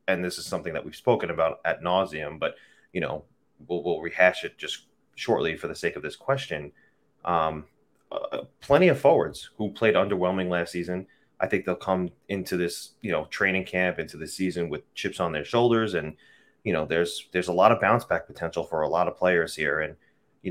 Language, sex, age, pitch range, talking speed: English, male, 30-49, 85-115 Hz, 210 wpm